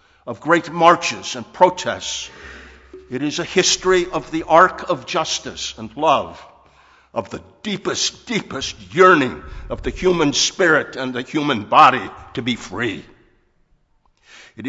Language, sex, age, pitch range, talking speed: English, male, 60-79, 115-165 Hz, 135 wpm